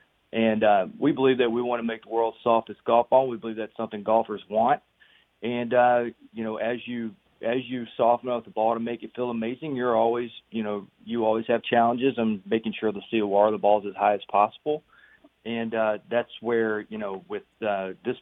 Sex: male